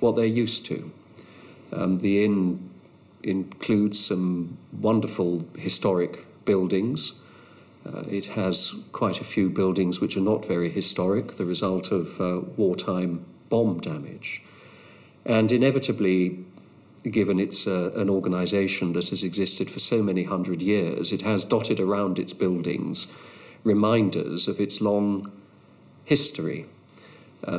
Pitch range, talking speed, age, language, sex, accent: 90-105 Hz, 125 wpm, 50-69, English, male, British